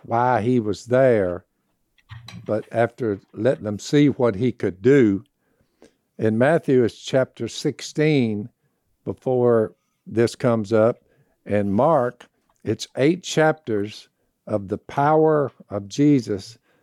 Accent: American